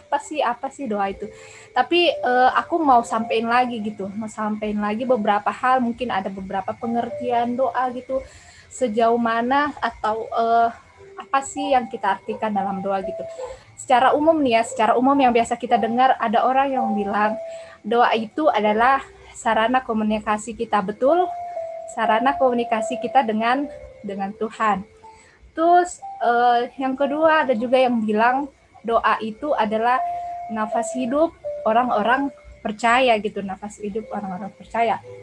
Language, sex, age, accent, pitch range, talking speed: Indonesian, female, 20-39, native, 220-270 Hz, 140 wpm